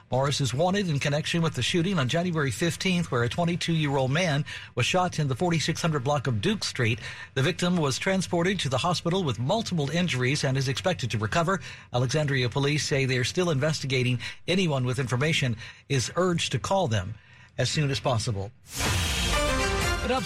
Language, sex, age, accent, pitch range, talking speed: English, male, 60-79, American, 130-180 Hz, 175 wpm